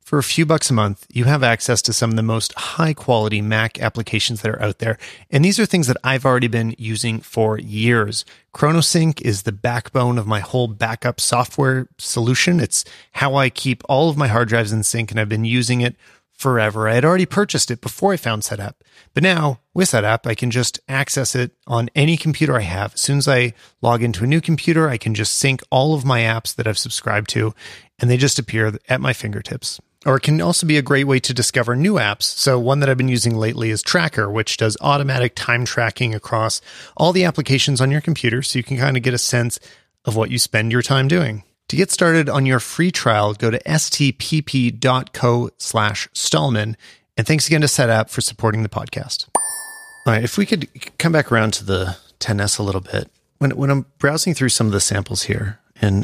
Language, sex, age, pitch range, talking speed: English, male, 30-49, 110-140 Hz, 220 wpm